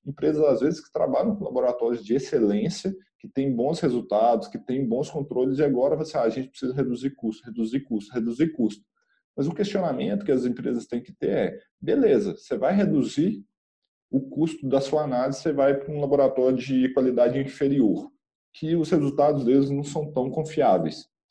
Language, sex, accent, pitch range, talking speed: Portuguese, male, Brazilian, 130-205 Hz, 185 wpm